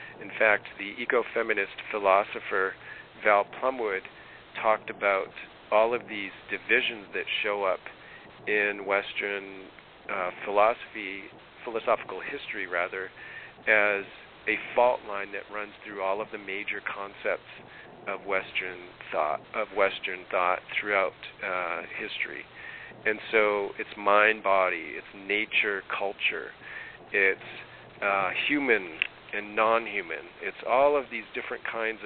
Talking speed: 120 wpm